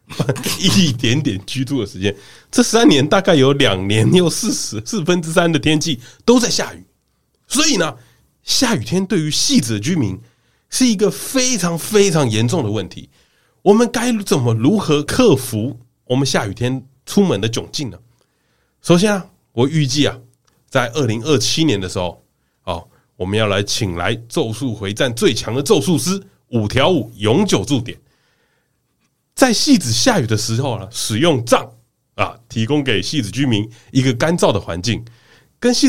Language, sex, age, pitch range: Chinese, male, 30-49, 110-155 Hz